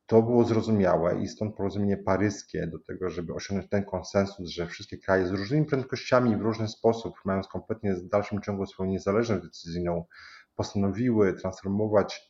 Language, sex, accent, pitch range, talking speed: Polish, male, native, 95-120 Hz, 155 wpm